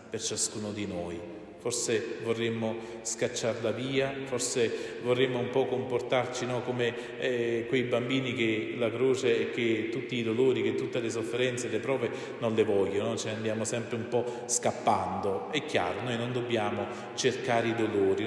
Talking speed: 160 wpm